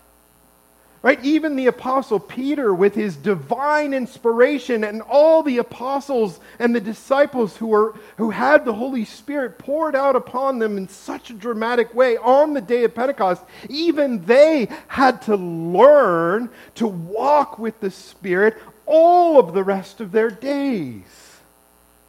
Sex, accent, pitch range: male, American, 190-260 Hz